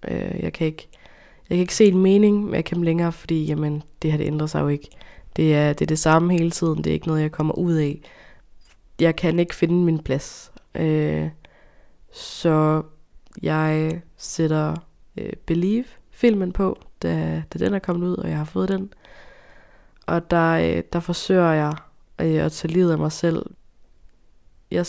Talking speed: 185 wpm